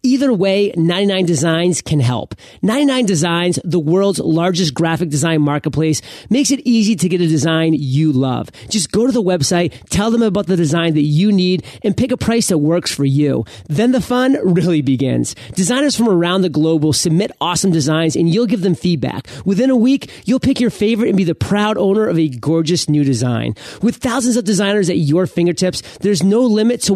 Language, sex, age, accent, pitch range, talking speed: English, male, 30-49, American, 160-210 Hz, 200 wpm